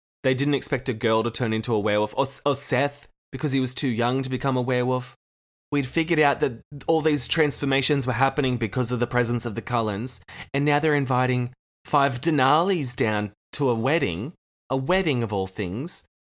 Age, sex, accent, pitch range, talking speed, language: 20-39, male, Australian, 110-150 Hz, 195 wpm, English